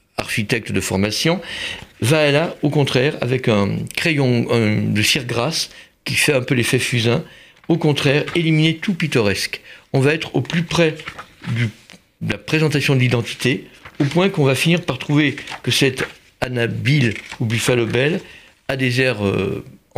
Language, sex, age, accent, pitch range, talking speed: French, male, 60-79, French, 125-160 Hz, 160 wpm